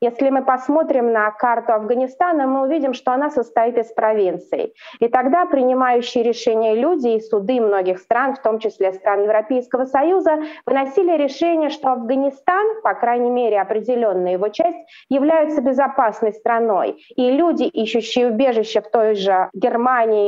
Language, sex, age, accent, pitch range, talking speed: Russian, female, 30-49, native, 205-270 Hz, 145 wpm